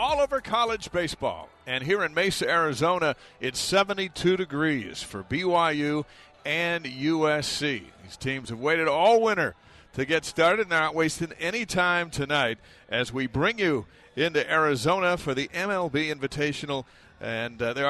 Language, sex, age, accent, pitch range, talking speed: English, male, 50-69, American, 125-155 Hz, 150 wpm